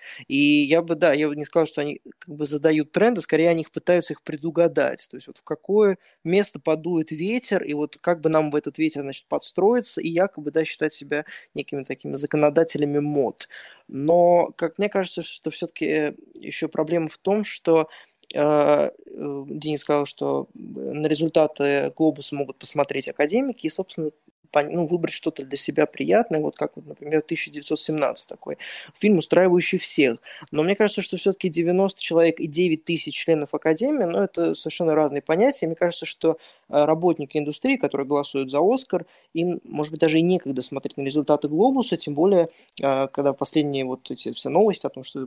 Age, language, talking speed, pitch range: 20-39, Ukrainian, 175 wpm, 145-175 Hz